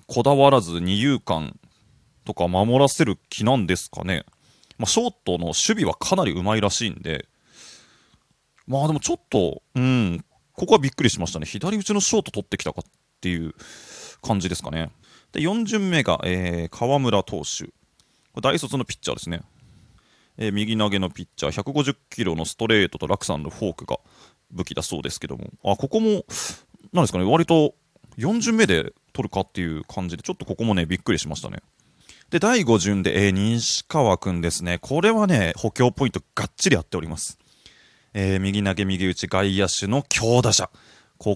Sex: male